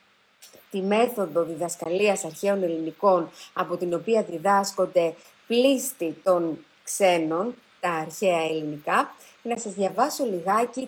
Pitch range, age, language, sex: 175-240 Hz, 30-49, Greek, female